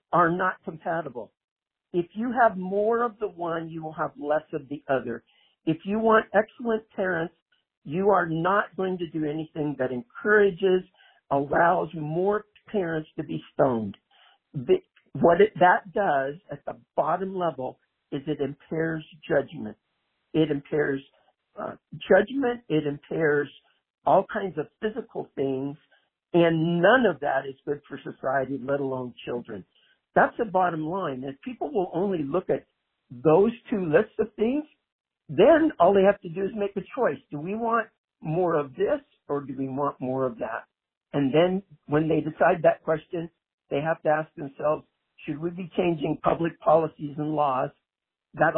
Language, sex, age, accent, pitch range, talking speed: English, male, 50-69, American, 145-195 Hz, 160 wpm